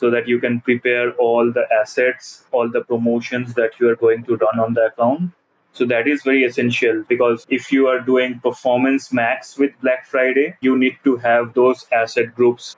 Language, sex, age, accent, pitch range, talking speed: English, male, 20-39, Indian, 120-130 Hz, 195 wpm